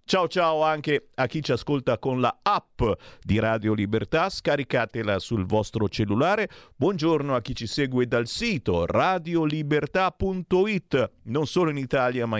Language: Italian